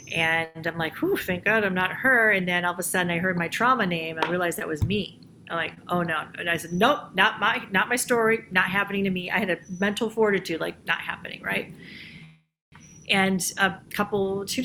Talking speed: 220 wpm